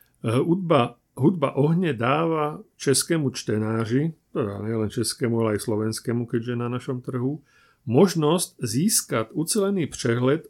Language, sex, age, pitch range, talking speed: Slovak, male, 40-59, 120-150 Hz, 115 wpm